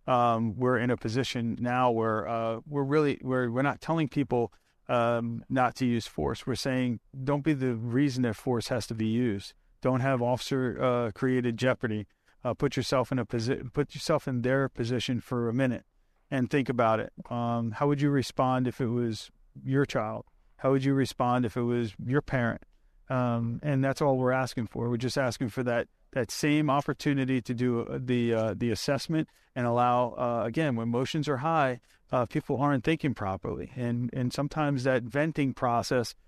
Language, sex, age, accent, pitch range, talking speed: English, male, 40-59, American, 115-135 Hz, 190 wpm